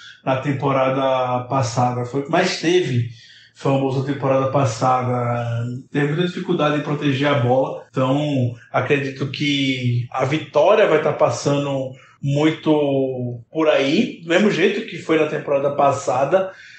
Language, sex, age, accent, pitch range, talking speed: Portuguese, male, 20-39, Brazilian, 135-155 Hz, 130 wpm